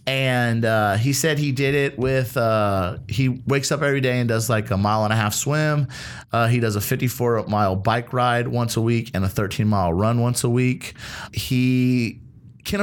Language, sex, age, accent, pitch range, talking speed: English, male, 30-49, American, 110-140 Hz, 195 wpm